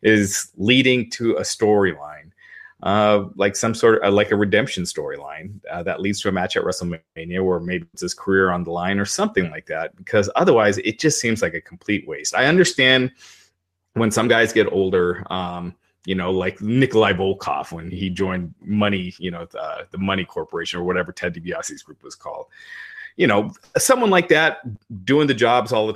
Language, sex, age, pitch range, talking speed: English, male, 30-49, 95-115 Hz, 190 wpm